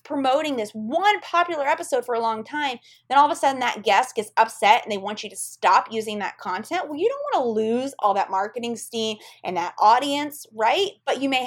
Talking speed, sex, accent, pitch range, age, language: 230 wpm, female, American, 205-275 Hz, 30-49, English